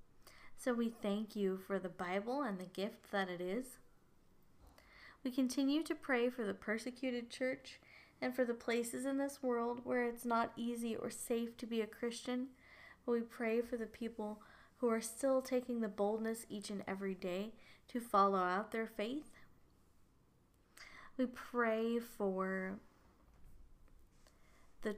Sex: female